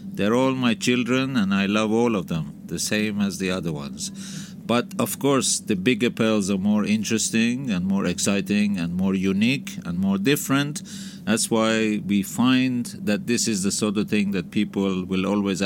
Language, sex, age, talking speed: French, male, 50-69, 190 wpm